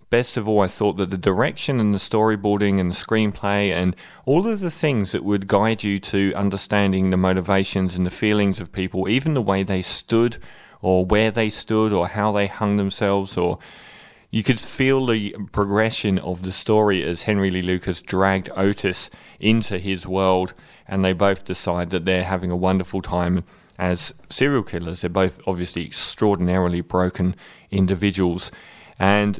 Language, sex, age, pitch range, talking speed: English, male, 30-49, 90-105 Hz, 170 wpm